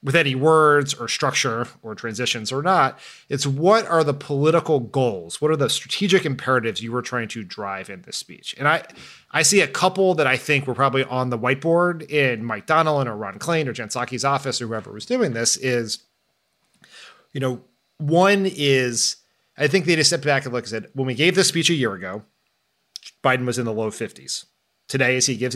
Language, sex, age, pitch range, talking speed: English, male, 30-49, 115-150 Hz, 210 wpm